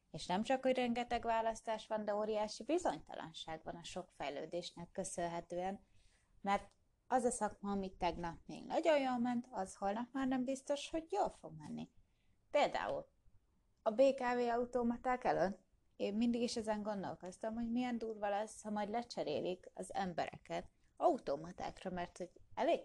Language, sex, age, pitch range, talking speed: Hungarian, female, 20-39, 175-235 Hz, 150 wpm